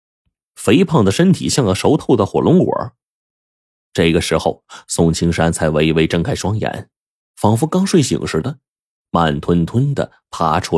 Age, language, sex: 20-39, Chinese, male